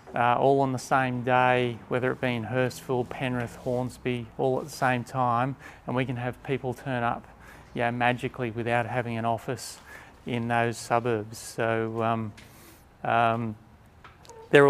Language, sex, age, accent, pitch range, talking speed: English, male, 30-49, Australian, 120-140 Hz, 155 wpm